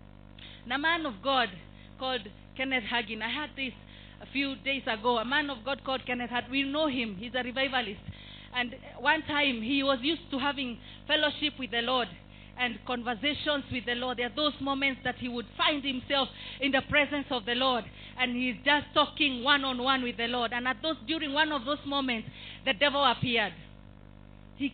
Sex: female